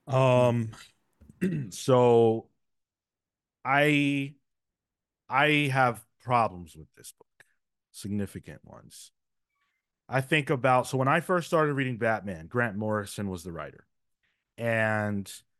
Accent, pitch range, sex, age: American, 110-140 Hz, male, 30-49